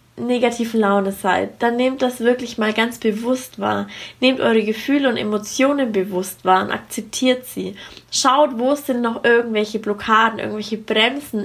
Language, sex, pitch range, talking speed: German, female, 200-240 Hz, 150 wpm